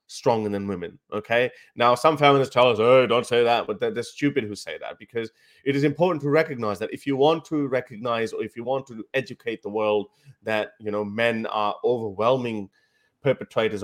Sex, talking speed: male, 205 wpm